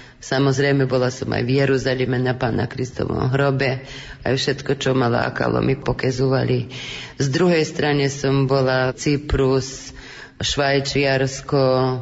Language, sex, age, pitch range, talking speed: Slovak, female, 30-49, 130-145 Hz, 120 wpm